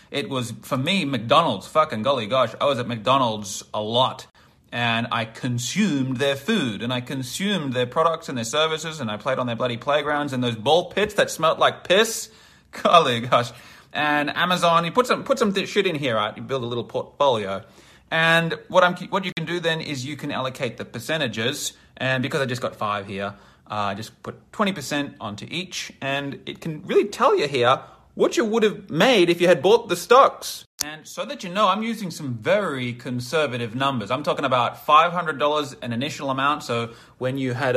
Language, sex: English, male